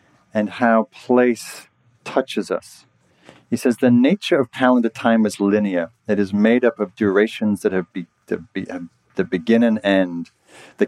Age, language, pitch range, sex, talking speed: 40-59, English, 95-115 Hz, male, 170 wpm